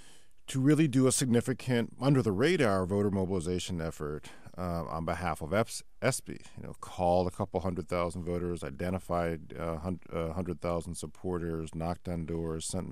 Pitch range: 85-100 Hz